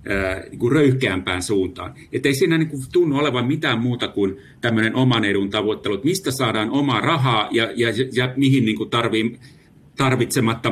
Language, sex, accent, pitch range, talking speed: Finnish, male, native, 105-130 Hz, 135 wpm